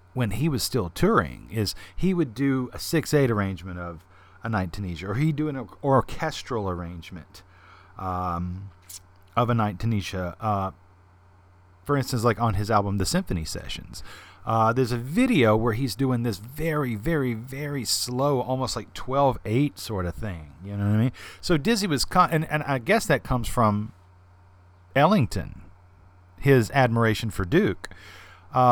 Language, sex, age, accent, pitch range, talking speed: English, male, 40-59, American, 90-125 Hz, 160 wpm